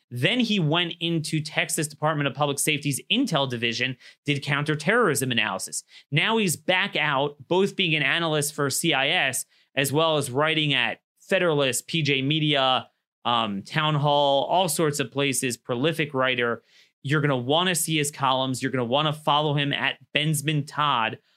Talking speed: 165 wpm